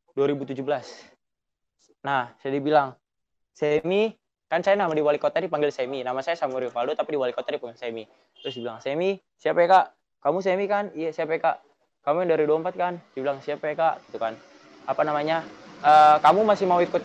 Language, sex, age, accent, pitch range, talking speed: Indonesian, male, 20-39, native, 130-160 Hz, 195 wpm